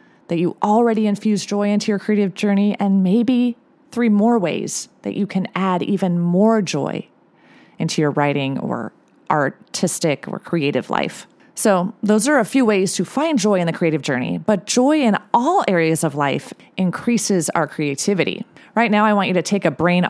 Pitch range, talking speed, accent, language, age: 170-230 Hz, 180 wpm, American, English, 30-49